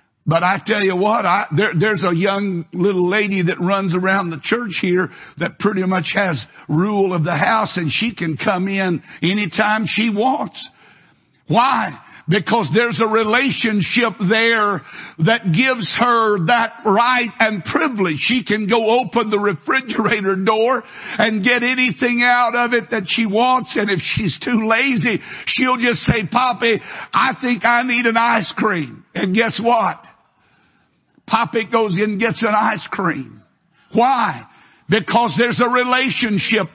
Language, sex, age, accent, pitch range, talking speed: English, male, 60-79, American, 200-255 Hz, 150 wpm